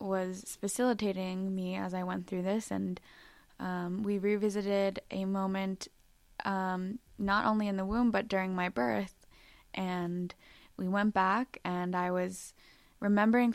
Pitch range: 180-210 Hz